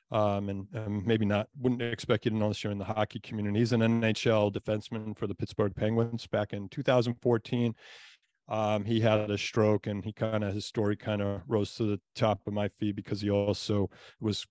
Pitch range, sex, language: 105-115 Hz, male, English